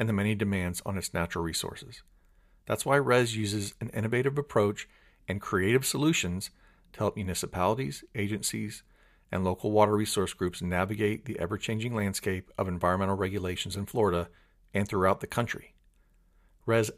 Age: 40-59